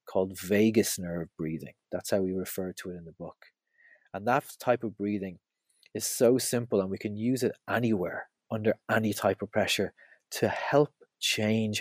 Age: 30-49